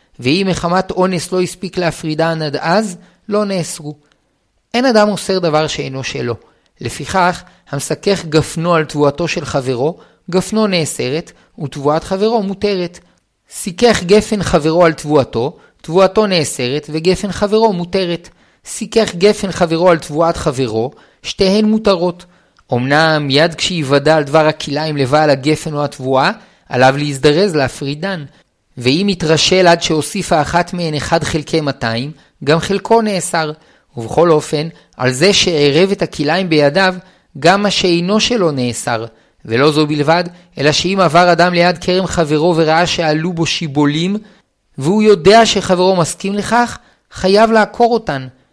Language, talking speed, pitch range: Hebrew, 130 wpm, 150-190 Hz